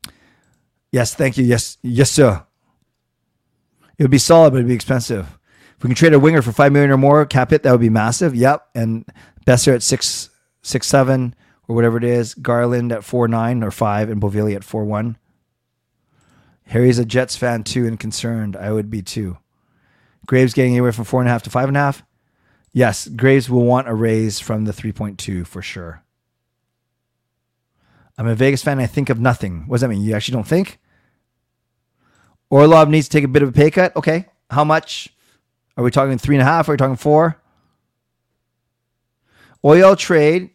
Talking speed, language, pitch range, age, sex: 195 wpm, English, 115-140 Hz, 20-39, male